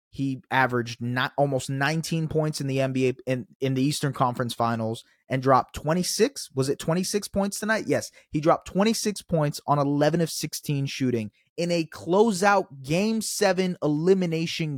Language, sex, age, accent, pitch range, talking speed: English, male, 20-39, American, 115-165 Hz, 160 wpm